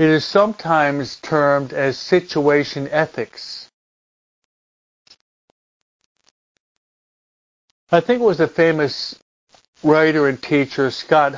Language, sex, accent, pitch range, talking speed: English, male, American, 130-170 Hz, 90 wpm